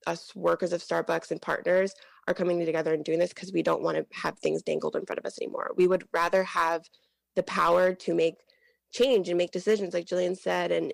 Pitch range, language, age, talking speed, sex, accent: 170-205 Hz, English, 20-39, 225 wpm, female, American